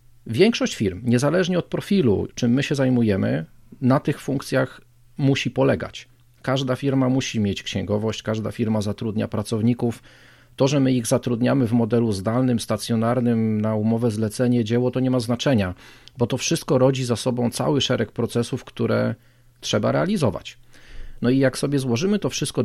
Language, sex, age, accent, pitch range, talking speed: Polish, male, 40-59, native, 115-130 Hz, 155 wpm